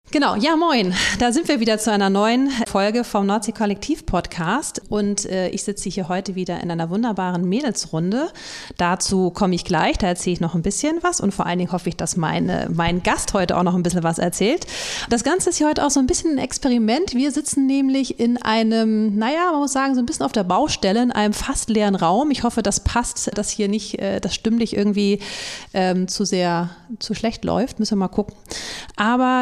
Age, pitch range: 30-49, 195-245 Hz